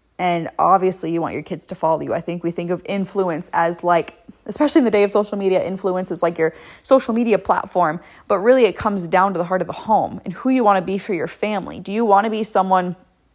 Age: 20-39